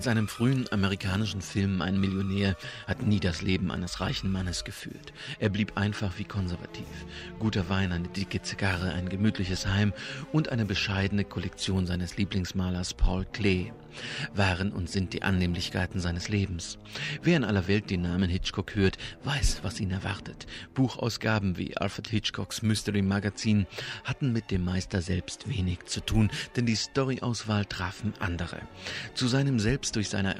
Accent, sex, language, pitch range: German, male, German, 95-115 Hz